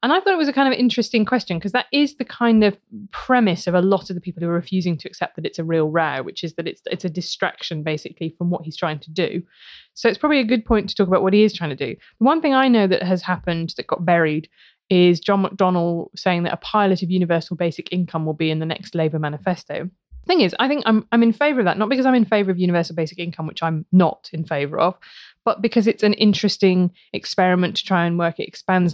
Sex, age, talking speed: female, 20-39, 265 wpm